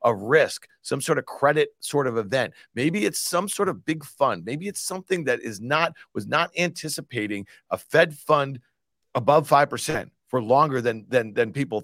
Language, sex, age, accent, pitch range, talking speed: English, male, 40-59, American, 115-155 Hz, 180 wpm